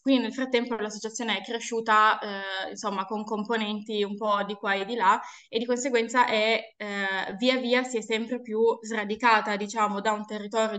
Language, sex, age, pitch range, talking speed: Italian, female, 20-39, 205-230 Hz, 185 wpm